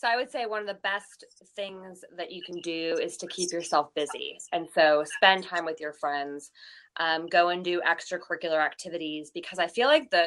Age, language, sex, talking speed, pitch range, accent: 20-39, English, female, 210 wpm, 160-200 Hz, American